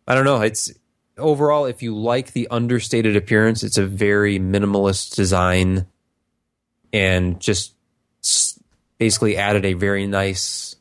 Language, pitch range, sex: English, 90-110 Hz, male